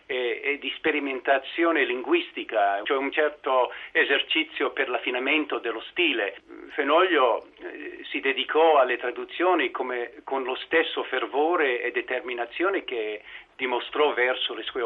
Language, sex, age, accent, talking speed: Italian, male, 50-69, native, 125 wpm